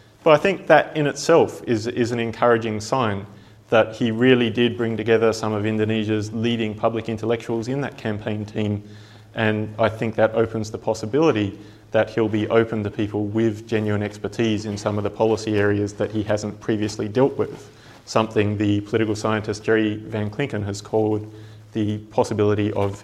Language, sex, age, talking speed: English, male, 30-49, 175 wpm